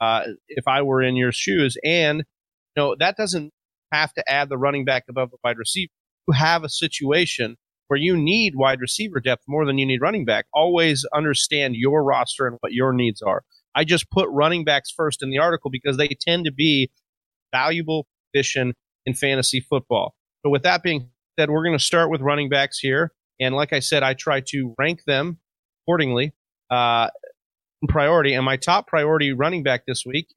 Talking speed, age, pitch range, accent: 200 wpm, 30-49, 130-155 Hz, American